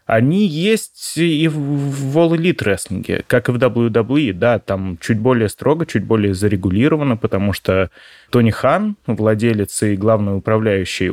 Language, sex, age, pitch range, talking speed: Russian, male, 20-39, 105-140 Hz, 145 wpm